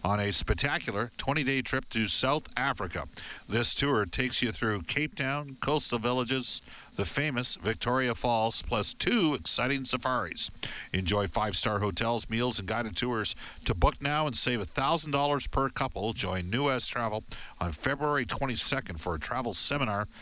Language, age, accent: English, 50-69, American